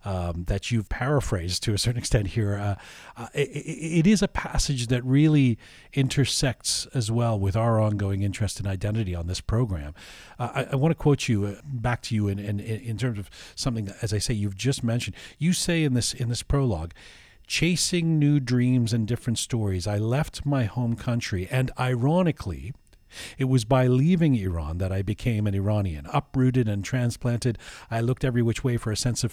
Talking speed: 195 wpm